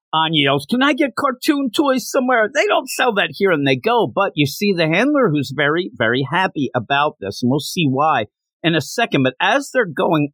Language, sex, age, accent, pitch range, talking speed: English, male, 50-69, American, 125-160 Hz, 220 wpm